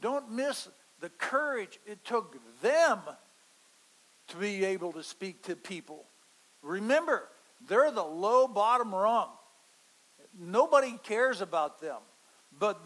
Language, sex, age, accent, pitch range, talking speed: English, male, 60-79, American, 155-215 Hz, 115 wpm